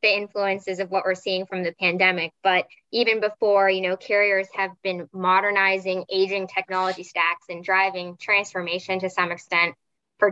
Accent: American